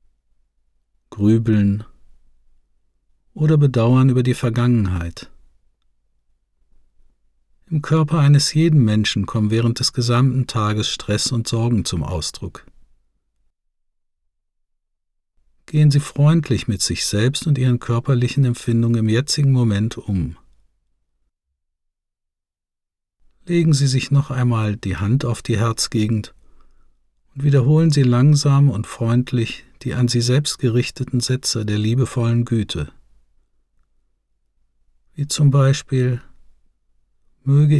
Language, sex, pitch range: German, male, 90-130 Hz